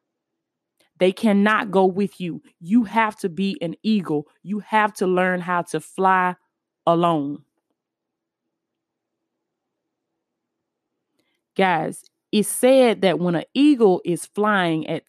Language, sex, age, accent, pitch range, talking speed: English, female, 20-39, American, 180-235 Hz, 115 wpm